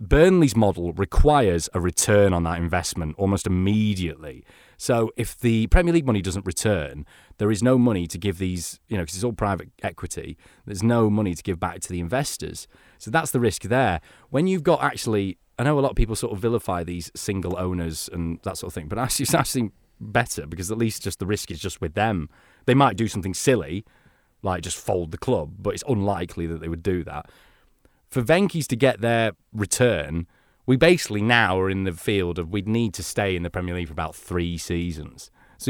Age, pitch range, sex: 30-49, 85-115 Hz, male